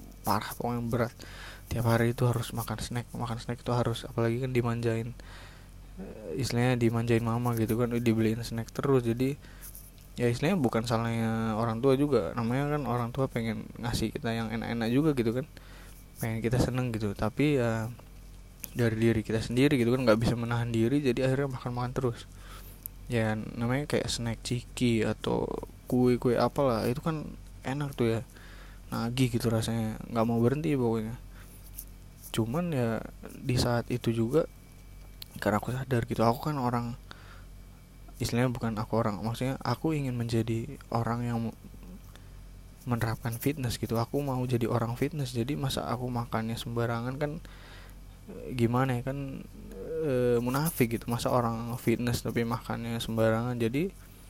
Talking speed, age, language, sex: 150 wpm, 20-39, Indonesian, male